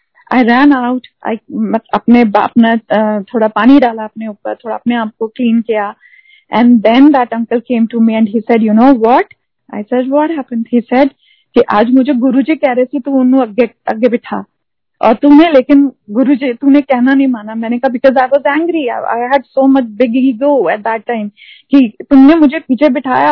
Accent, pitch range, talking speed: native, 235-285 Hz, 150 wpm